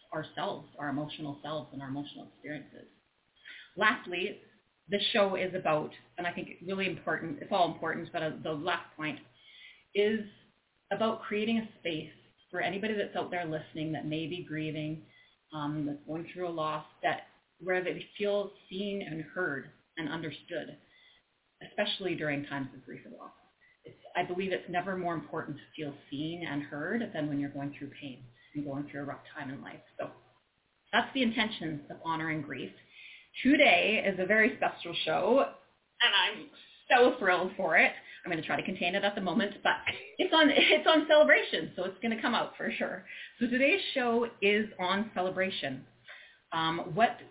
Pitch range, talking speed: 155-210 Hz, 175 wpm